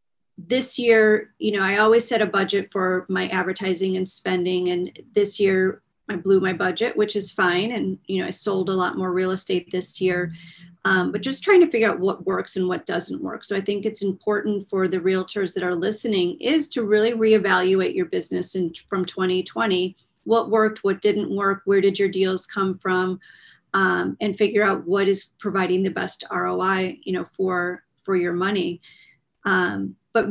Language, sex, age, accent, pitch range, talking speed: English, female, 40-59, American, 185-210 Hz, 195 wpm